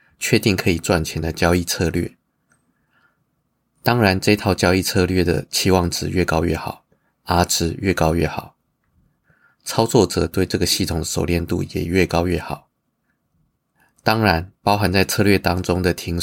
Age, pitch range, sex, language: 20-39, 85-95 Hz, male, Chinese